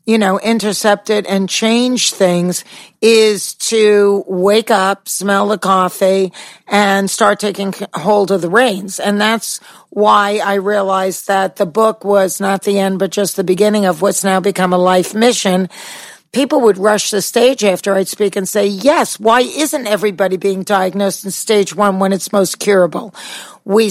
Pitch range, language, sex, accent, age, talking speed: 190-220 Hz, English, female, American, 50-69, 170 wpm